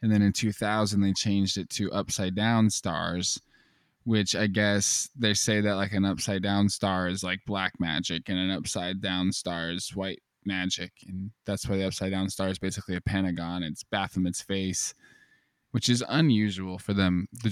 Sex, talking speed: male, 185 wpm